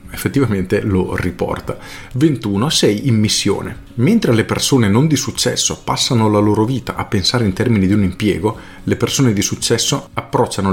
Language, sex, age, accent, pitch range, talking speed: Italian, male, 40-59, native, 95-120 Hz, 160 wpm